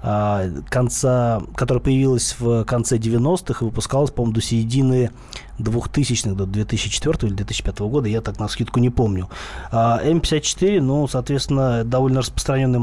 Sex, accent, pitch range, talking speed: male, native, 110-140 Hz, 140 wpm